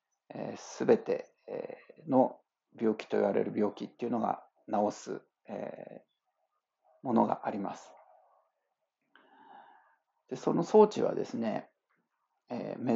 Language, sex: Japanese, male